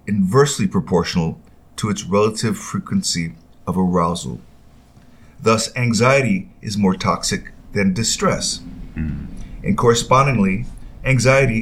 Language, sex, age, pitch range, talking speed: English, male, 50-69, 95-130 Hz, 95 wpm